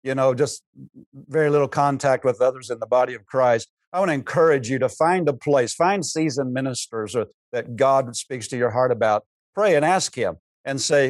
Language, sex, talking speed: English, male, 210 wpm